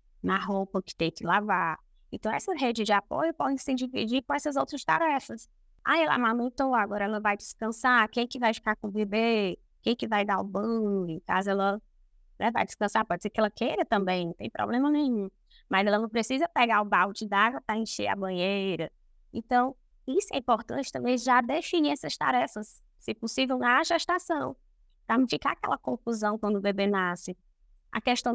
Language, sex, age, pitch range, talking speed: Portuguese, female, 20-39, 190-240 Hz, 185 wpm